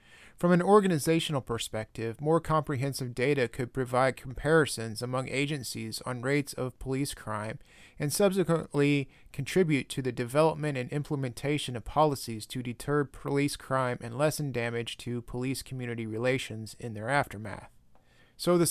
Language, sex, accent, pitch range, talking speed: English, male, American, 120-155 Hz, 140 wpm